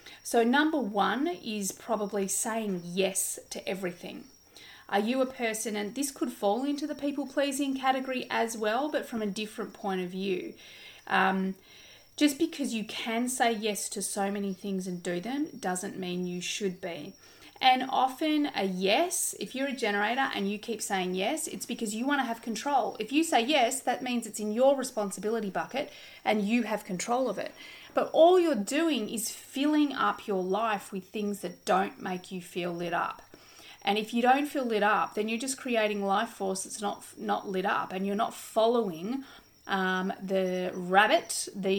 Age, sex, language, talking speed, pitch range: 30-49, female, English, 185 wpm, 195-255 Hz